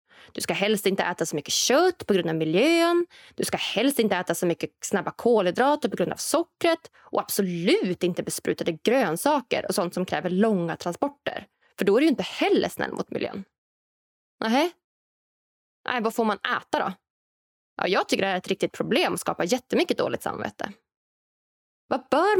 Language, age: Swedish, 20-39